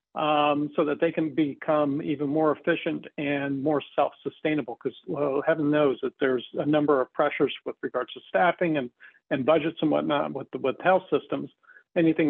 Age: 50-69